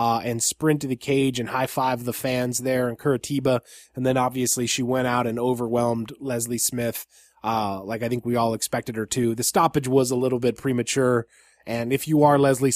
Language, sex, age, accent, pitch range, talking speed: English, male, 20-39, American, 125-160 Hz, 210 wpm